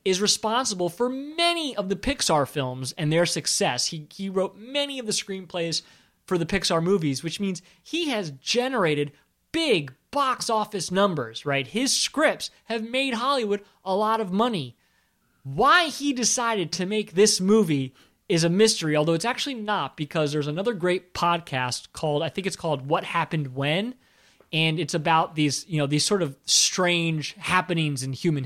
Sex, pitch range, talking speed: male, 150-215 Hz, 170 wpm